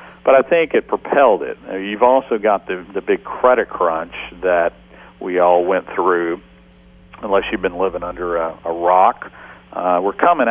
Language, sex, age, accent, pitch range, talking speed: English, male, 50-69, American, 85-125 Hz, 170 wpm